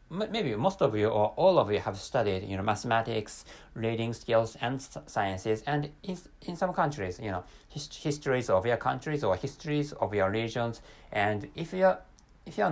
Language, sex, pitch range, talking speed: English, male, 105-150 Hz, 185 wpm